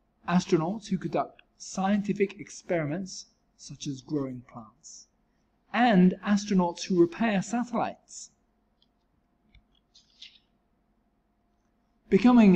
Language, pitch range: English, 150-200 Hz